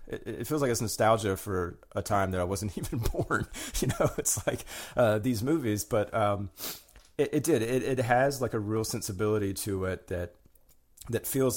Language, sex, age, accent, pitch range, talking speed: English, male, 30-49, American, 90-105 Hz, 190 wpm